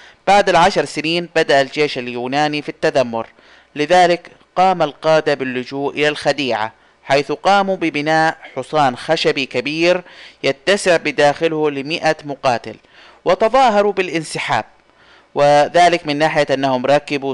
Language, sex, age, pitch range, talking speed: Arabic, male, 30-49, 140-165 Hz, 105 wpm